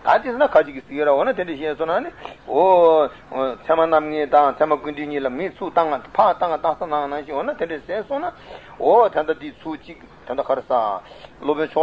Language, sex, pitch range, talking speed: Italian, male, 145-205 Hz, 70 wpm